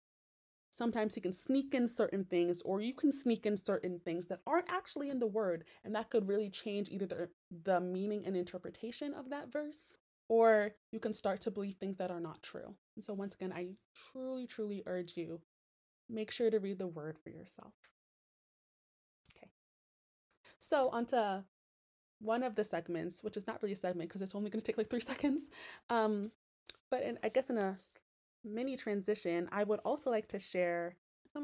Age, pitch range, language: 20-39, 180-230 Hz, English